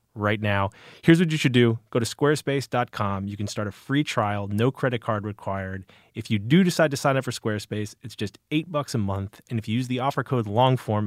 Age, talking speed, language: 30-49, 235 wpm, English